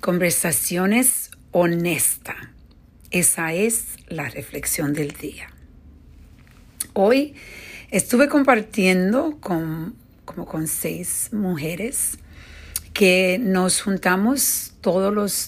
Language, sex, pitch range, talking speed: Spanish, female, 160-195 Hz, 80 wpm